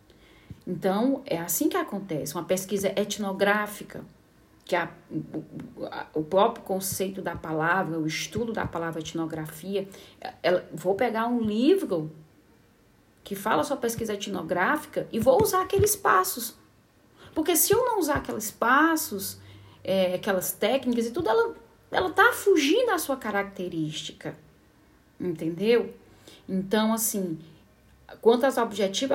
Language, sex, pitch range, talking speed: Portuguese, female, 170-215 Hz, 125 wpm